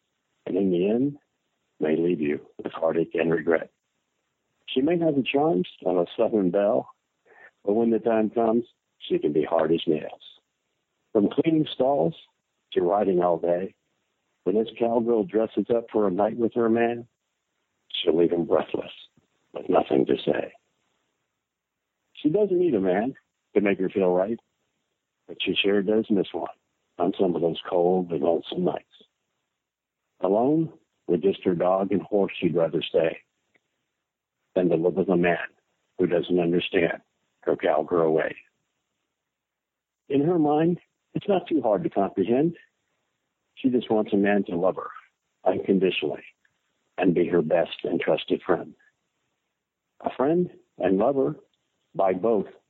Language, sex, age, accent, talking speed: English, male, 60-79, American, 155 wpm